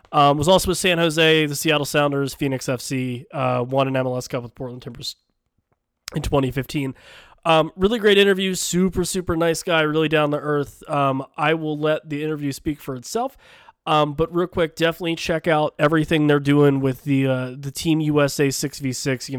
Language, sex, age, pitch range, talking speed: English, male, 20-39, 130-160 Hz, 185 wpm